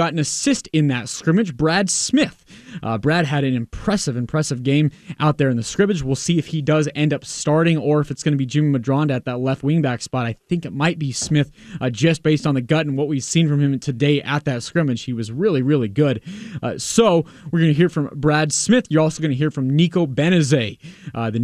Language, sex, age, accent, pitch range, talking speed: English, male, 20-39, American, 135-175 Hz, 240 wpm